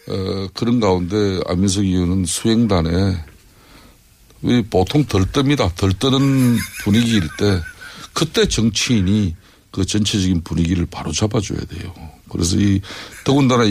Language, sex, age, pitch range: Korean, male, 60-79, 90-115 Hz